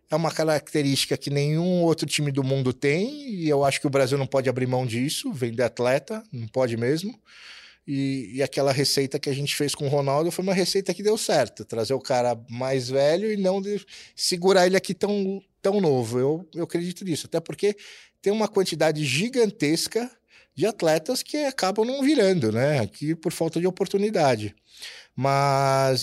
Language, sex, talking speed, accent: Portuguese, male, 185 wpm, Brazilian